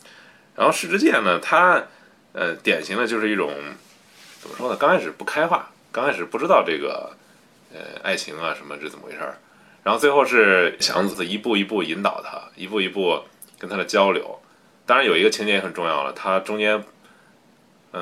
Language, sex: Chinese, male